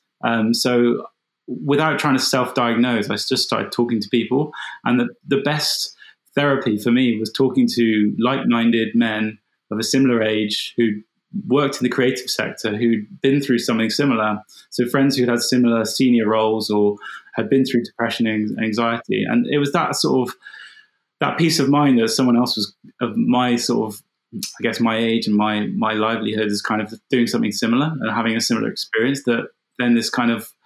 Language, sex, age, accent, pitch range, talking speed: English, male, 20-39, British, 110-130 Hz, 185 wpm